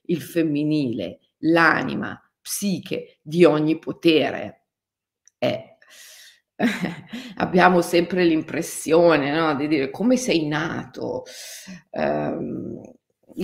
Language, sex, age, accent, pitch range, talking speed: Italian, female, 40-59, native, 155-205 Hz, 75 wpm